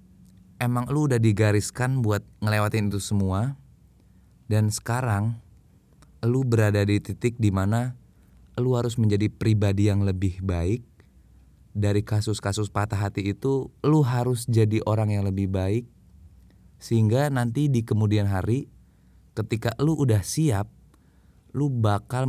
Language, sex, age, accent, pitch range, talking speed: Indonesian, male, 20-39, native, 95-120 Hz, 120 wpm